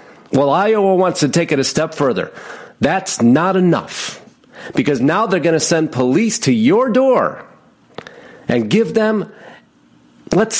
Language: English